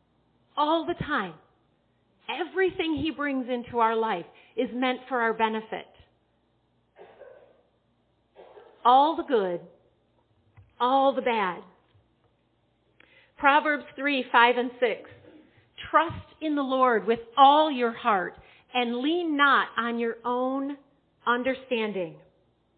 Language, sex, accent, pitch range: English, female, American, 215-260 Hz